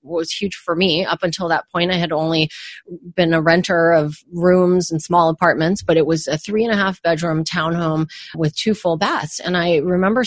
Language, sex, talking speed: English, female, 210 wpm